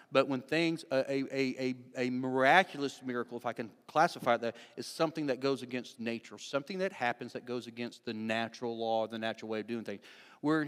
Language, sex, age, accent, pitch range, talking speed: English, male, 40-59, American, 115-145 Hz, 200 wpm